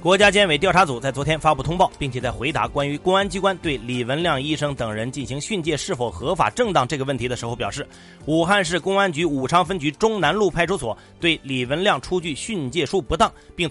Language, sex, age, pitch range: Chinese, male, 30-49, 125-180 Hz